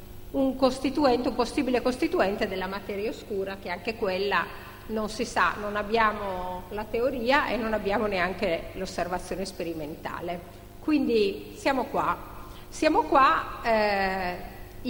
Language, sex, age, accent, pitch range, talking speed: Italian, female, 40-59, native, 195-255 Hz, 120 wpm